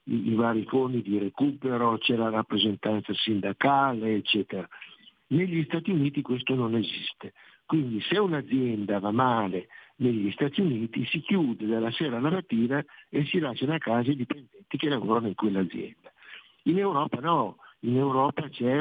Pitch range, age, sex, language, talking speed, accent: 110-140 Hz, 60-79, male, Italian, 145 wpm, native